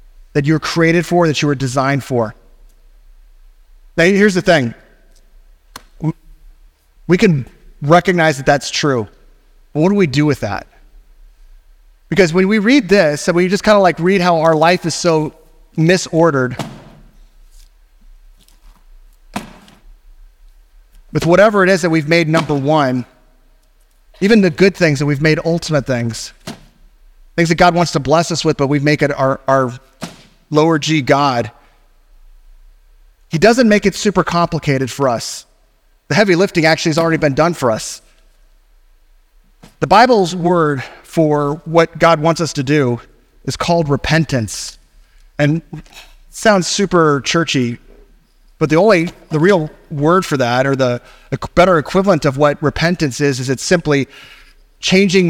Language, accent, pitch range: English, American, 130-170 Hz